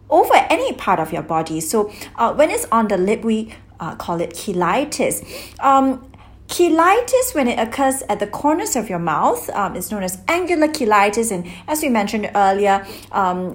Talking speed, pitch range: 180 wpm, 180-255 Hz